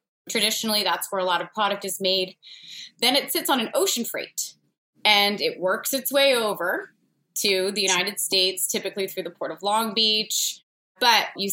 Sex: female